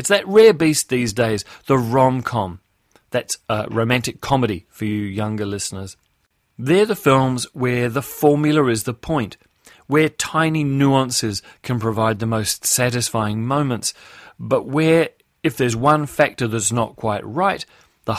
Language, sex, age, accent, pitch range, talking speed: English, male, 30-49, British, 115-140 Hz, 150 wpm